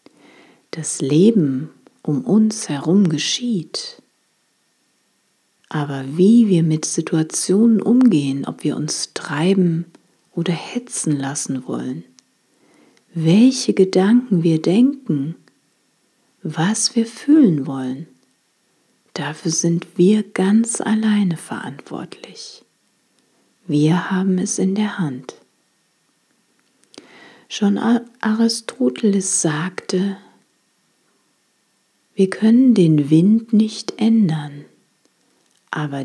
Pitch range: 155-210 Hz